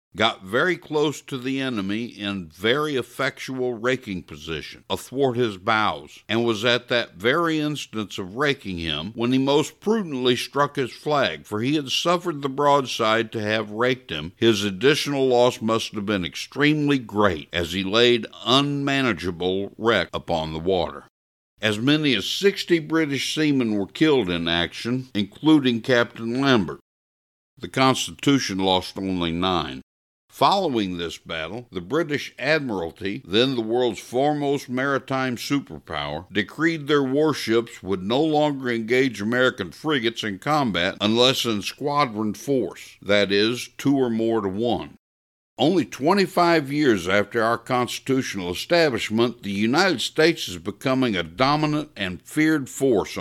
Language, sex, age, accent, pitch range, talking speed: English, male, 60-79, American, 100-140 Hz, 140 wpm